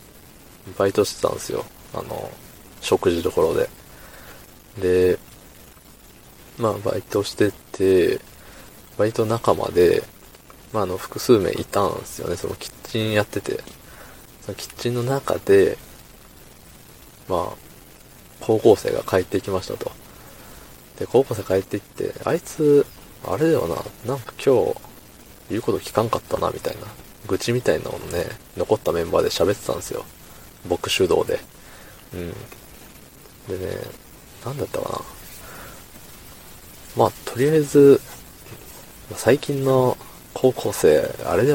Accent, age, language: native, 20-39, Japanese